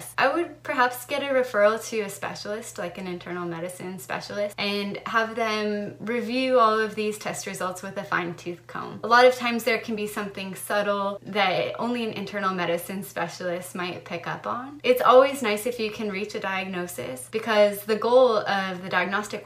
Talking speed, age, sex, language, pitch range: 190 wpm, 20-39, female, English, 180-220 Hz